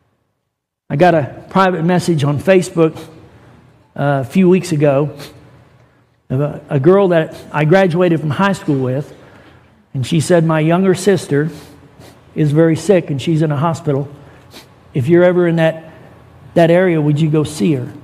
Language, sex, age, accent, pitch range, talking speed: English, male, 60-79, American, 135-165 Hz, 165 wpm